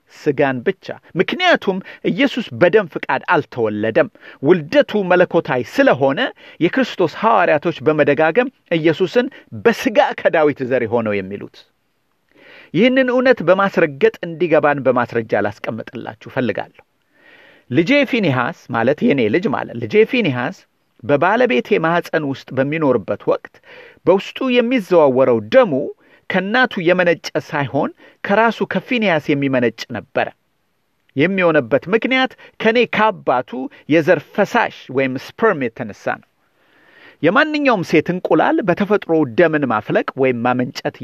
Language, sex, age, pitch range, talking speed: Amharic, male, 40-59, 145-240 Hz, 95 wpm